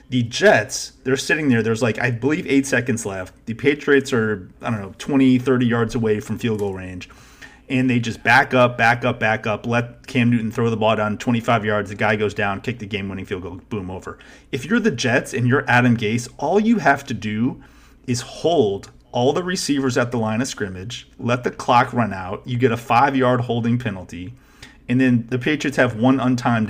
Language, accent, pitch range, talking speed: English, American, 110-135 Hz, 215 wpm